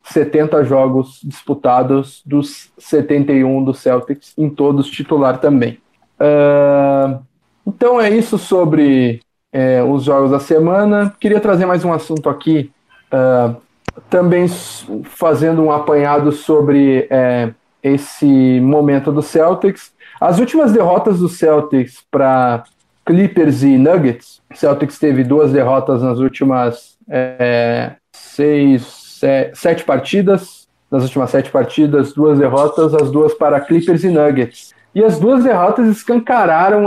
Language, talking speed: Portuguese, 120 wpm